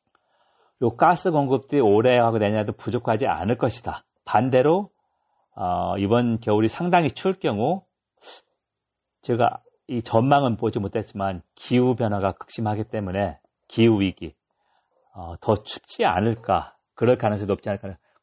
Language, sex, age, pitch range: Korean, male, 40-59, 100-130 Hz